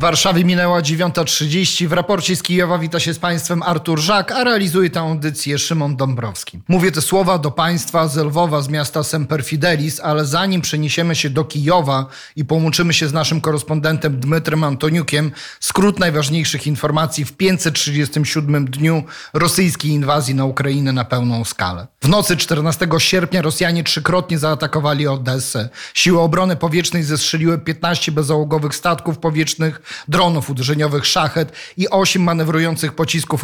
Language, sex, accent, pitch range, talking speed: Polish, male, native, 150-175 Hz, 145 wpm